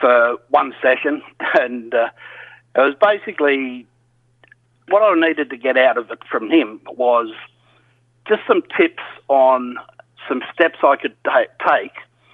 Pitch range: 120-145 Hz